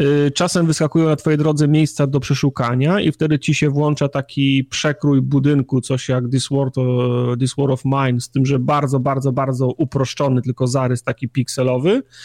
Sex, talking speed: male, 160 wpm